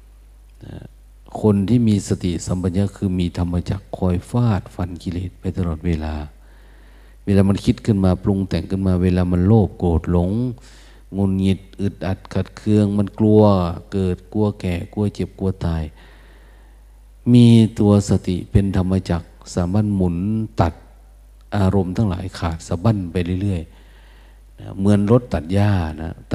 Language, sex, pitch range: Thai, male, 85-105 Hz